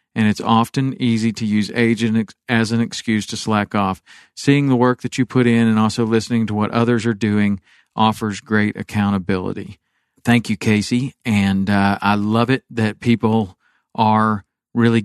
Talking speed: 170 wpm